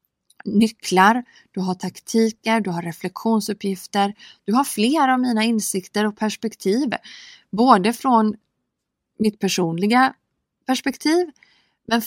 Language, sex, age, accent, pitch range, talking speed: Swedish, female, 20-39, native, 180-230 Hz, 105 wpm